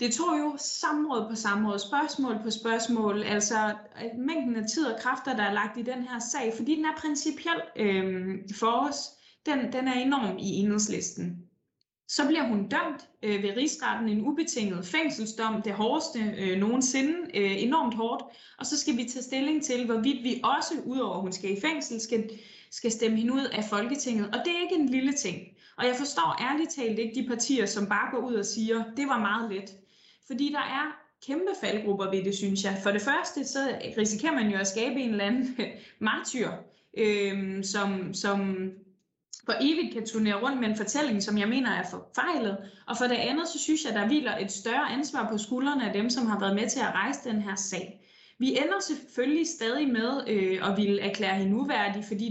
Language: Danish